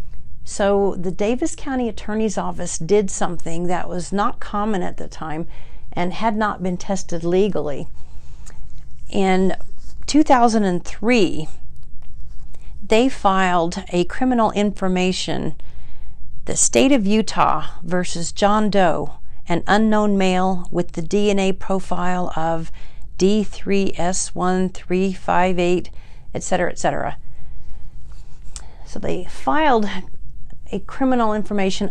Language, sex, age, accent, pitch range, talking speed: English, female, 50-69, American, 170-210 Hz, 100 wpm